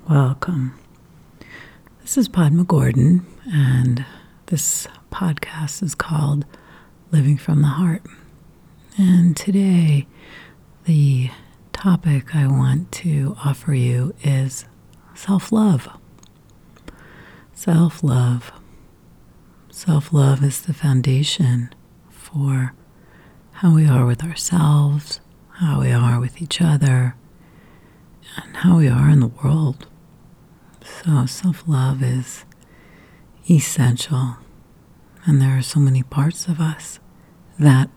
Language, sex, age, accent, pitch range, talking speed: English, female, 40-59, American, 135-165 Hz, 100 wpm